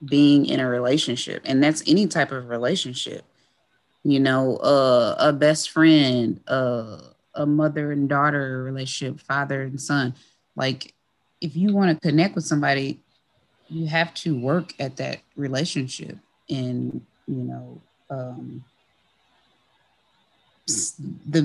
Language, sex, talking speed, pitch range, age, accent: English, female, 125 wpm, 130-160 Hz, 20-39, American